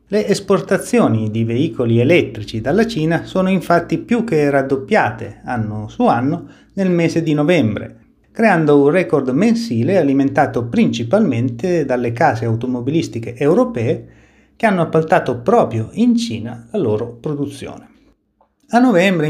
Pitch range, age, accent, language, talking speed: 120-170 Hz, 30-49, native, Italian, 125 wpm